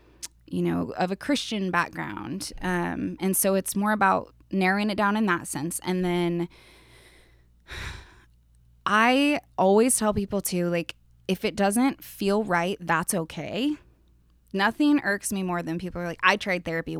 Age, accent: 20-39, American